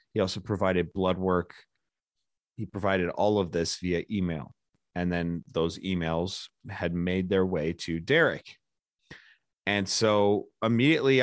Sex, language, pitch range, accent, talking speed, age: male, English, 95-115 Hz, American, 135 wpm, 30-49